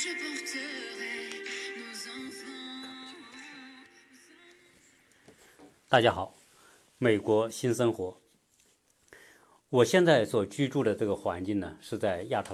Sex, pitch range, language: male, 100-135 Hz, Chinese